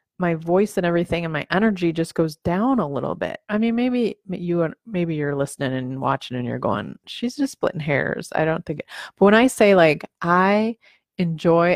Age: 30-49